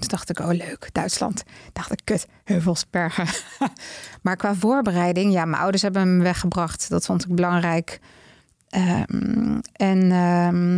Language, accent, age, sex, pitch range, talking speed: Dutch, Dutch, 20-39, female, 170-195 Hz, 145 wpm